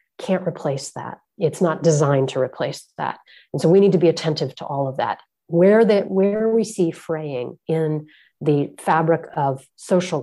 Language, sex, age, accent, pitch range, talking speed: English, female, 40-59, American, 145-180 Hz, 180 wpm